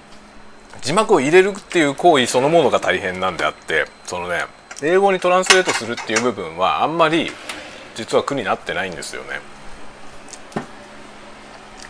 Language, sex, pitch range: Japanese, male, 130-185 Hz